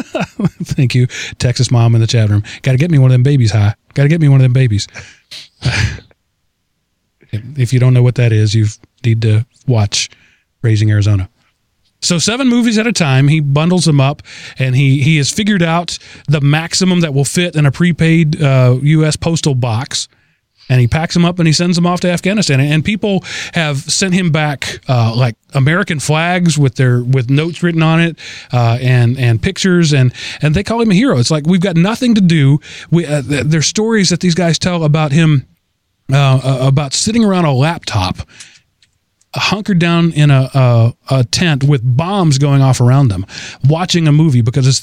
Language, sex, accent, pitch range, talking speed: English, male, American, 125-165 Hz, 200 wpm